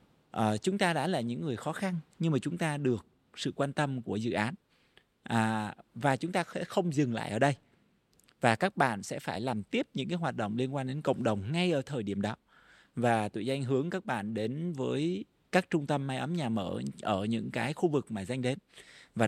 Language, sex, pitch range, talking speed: Vietnamese, male, 110-145 Hz, 235 wpm